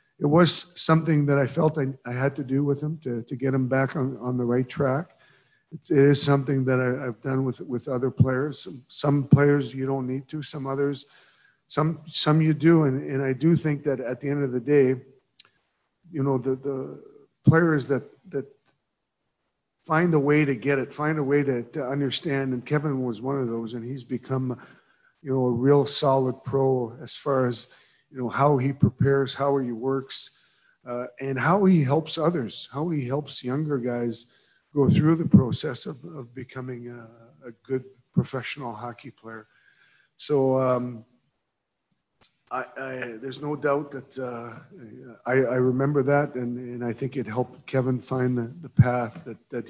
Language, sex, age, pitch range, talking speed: English, male, 50-69, 125-145 Hz, 185 wpm